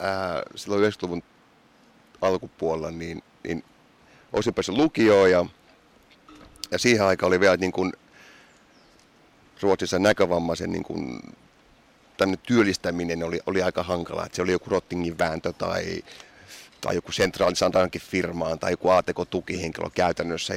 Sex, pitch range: male, 85-95 Hz